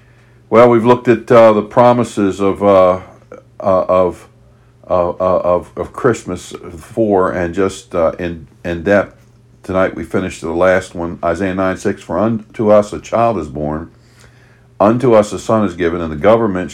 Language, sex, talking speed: English, male, 170 wpm